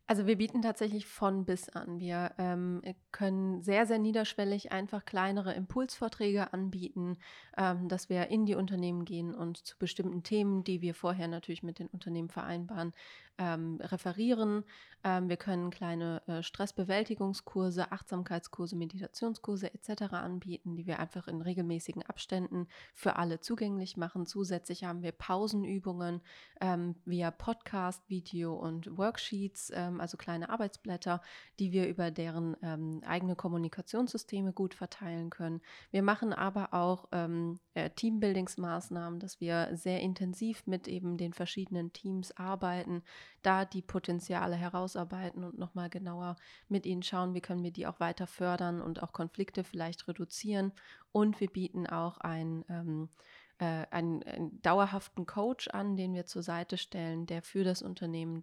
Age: 30-49